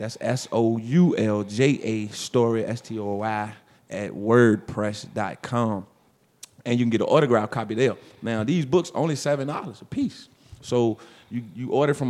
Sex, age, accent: male, 30-49, American